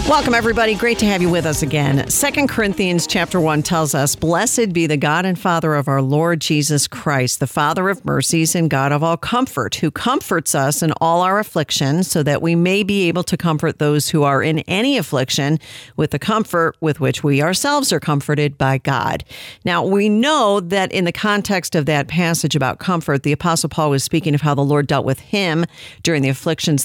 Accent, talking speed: American, 210 wpm